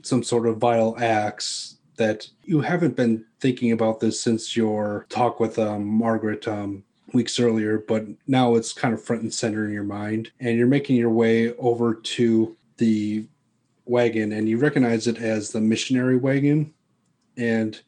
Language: English